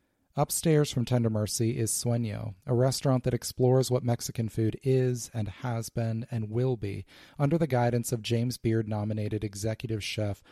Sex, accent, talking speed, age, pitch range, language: male, American, 160 wpm, 30-49, 110-125 Hz, English